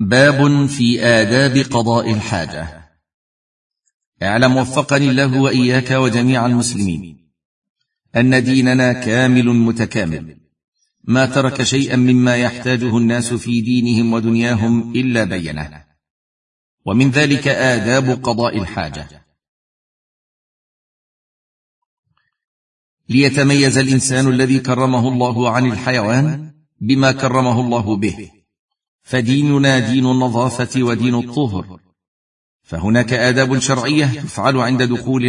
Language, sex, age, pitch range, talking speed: Arabic, male, 50-69, 105-130 Hz, 90 wpm